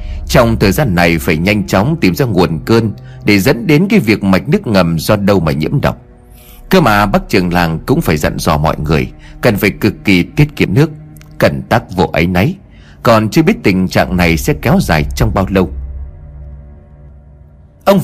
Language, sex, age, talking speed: Vietnamese, male, 30-49, 200 wpm